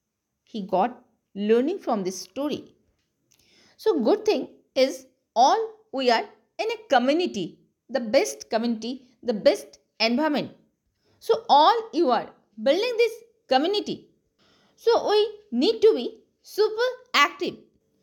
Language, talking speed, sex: Hindi, 120 wpm, female